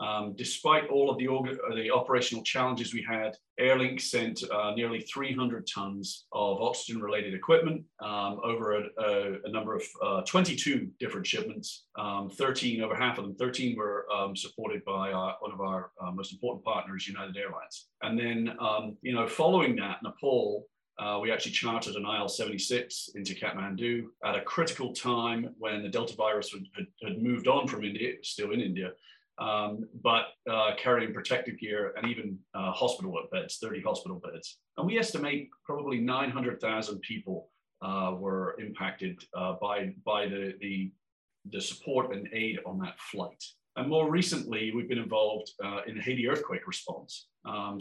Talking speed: 165 wpm